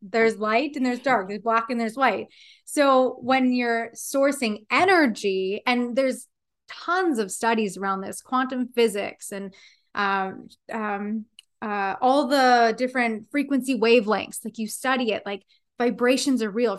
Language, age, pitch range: English, 20-39, 210-255 Hz